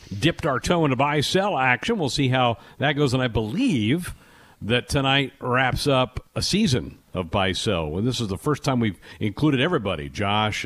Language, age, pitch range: English, 50-69, 100-140 Hz